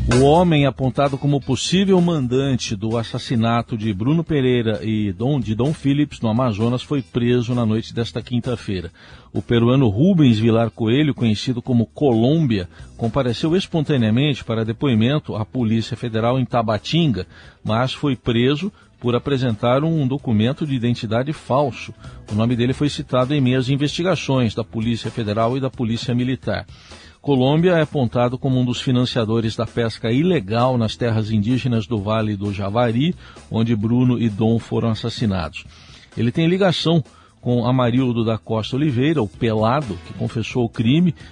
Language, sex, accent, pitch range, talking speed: Portuguese, male, Brazilian, 115-135 Hz, 150 wpm